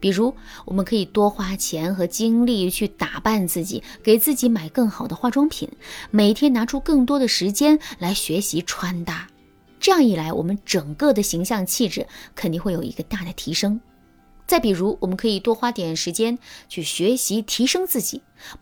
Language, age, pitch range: Chinese, 20-39, 185-265 Hz